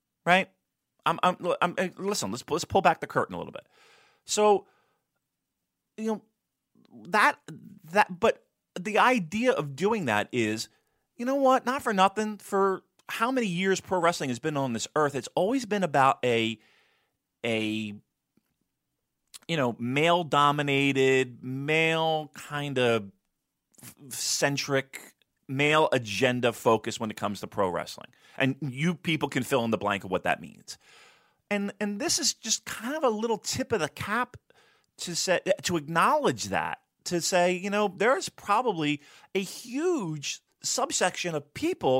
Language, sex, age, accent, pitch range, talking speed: English, male, 30-49, American, 140-210 Hz, 155 wpm